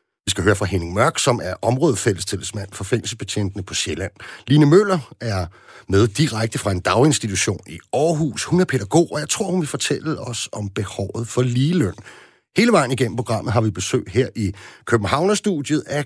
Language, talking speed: Danish, 185 wpm